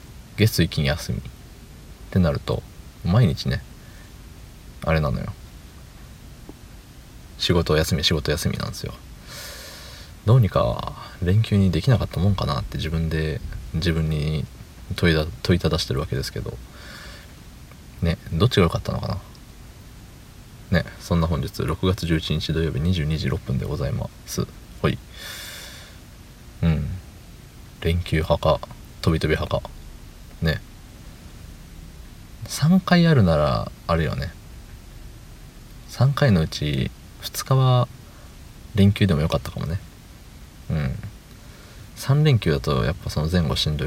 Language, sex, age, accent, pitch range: Japanese, male, 40-59, native, 80-110 Hz